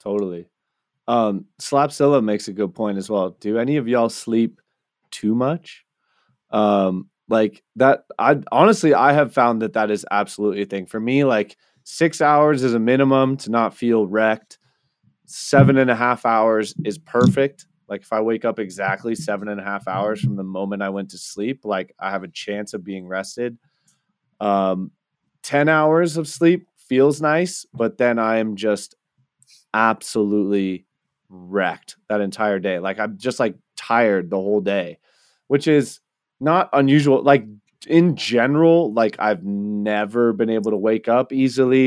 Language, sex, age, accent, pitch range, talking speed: English, male, 20-39, American, 105-135 Hz, 165 wpm